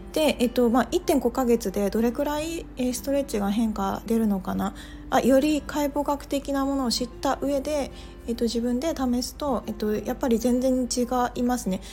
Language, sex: Japanese, female